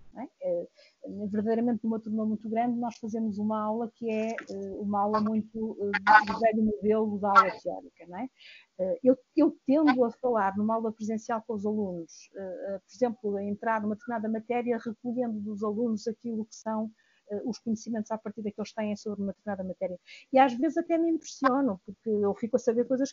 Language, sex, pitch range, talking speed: Portuguese, female, 210-250 Hz, 180 wpm